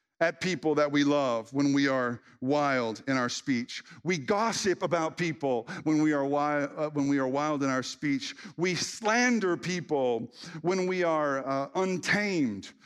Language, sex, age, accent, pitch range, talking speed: English, male, 50-69, American, 135-190 Hz, 170 wpm